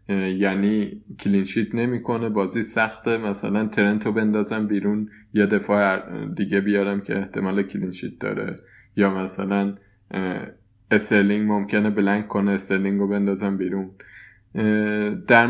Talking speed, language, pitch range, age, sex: 110 wpm, Persian, 100-110 Hz, 20-39, male